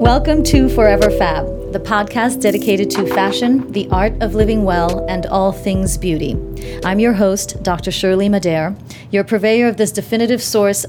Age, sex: 30-49, female